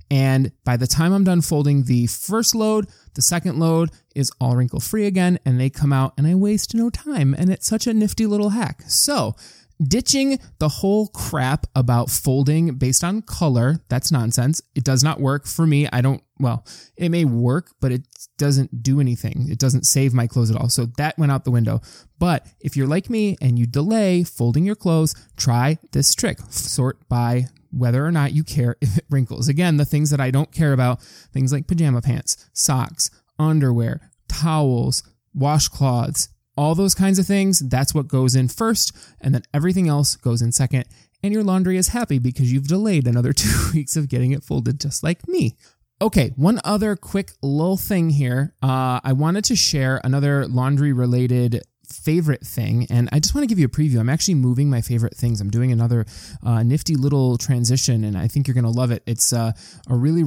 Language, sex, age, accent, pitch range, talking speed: English, male, 20-39, American, 125-165 Hz, 200 wpm